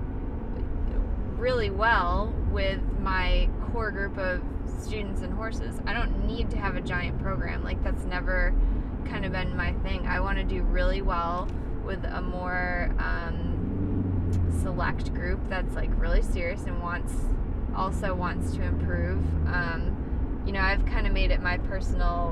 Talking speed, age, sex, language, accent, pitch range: 155 wpm, 20-39, female, English, American, 80-90 Hz